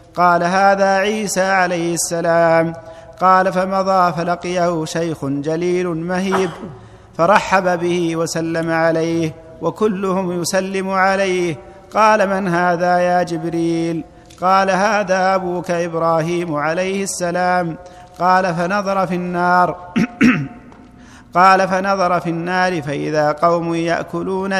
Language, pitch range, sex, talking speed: Arabic, 170-190 Hz, male, 100 wpm